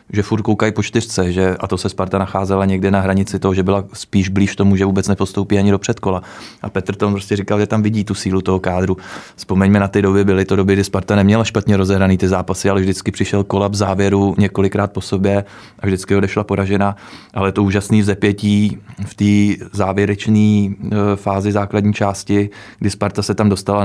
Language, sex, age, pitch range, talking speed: Czech, male, 20-39, 95-100 Hz, 200 wpm